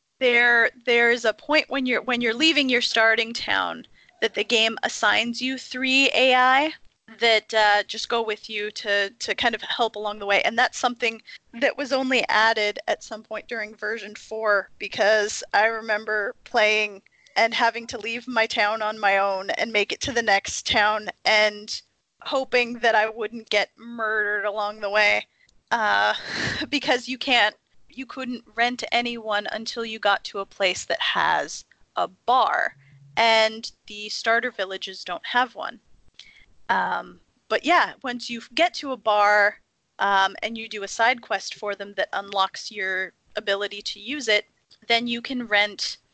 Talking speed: 170 wpm